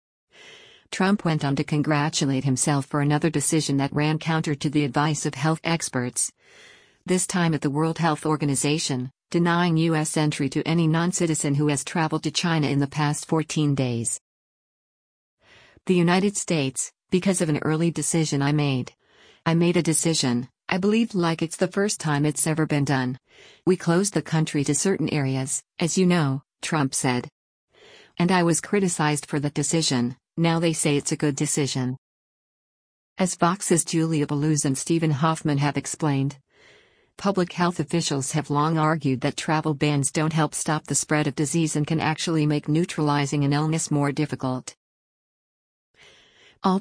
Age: 50-69